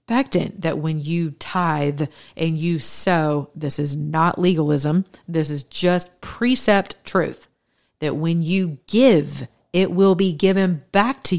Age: 40-59